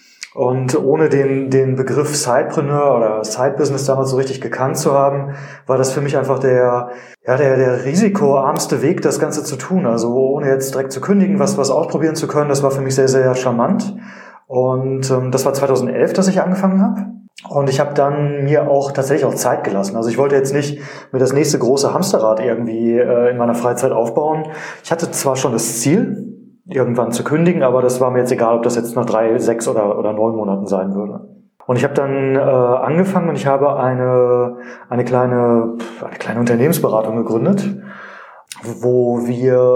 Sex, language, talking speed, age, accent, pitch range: male, German, 190 wpm, 30-49, German, 125-150 Hz